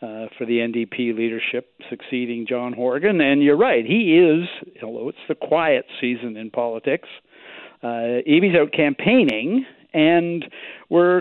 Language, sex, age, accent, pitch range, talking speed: English, male, 60-79, American, 125-195 Hz, 140 wpm